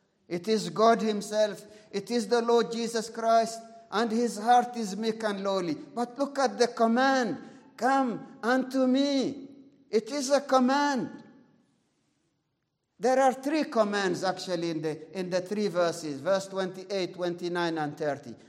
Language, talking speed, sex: English, 145 wpm, male